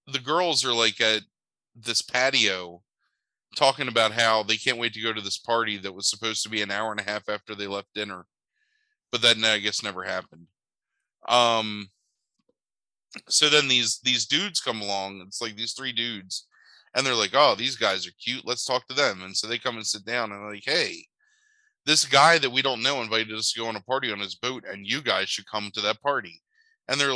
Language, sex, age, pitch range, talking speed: English, male, 20-39, 105-135 Hz, 220 wpm